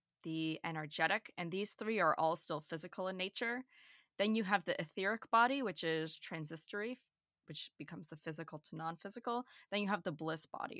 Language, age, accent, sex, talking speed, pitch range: English, 20-39, American, female, 180 wpm, 160-210 Hz